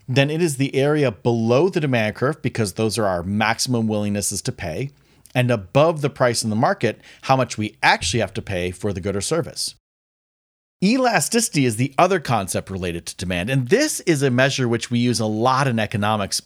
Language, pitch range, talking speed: English, 105-140 Hz, 205 wpm